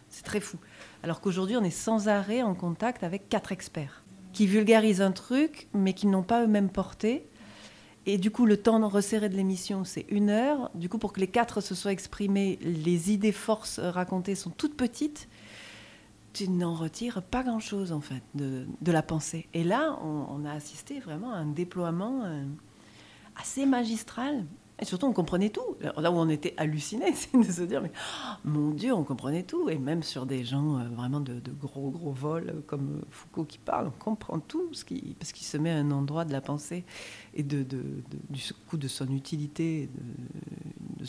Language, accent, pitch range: French, French, 150-210 Hz